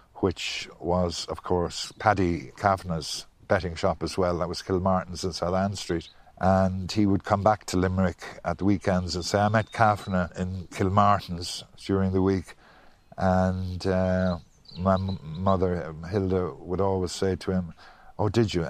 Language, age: English, 50-69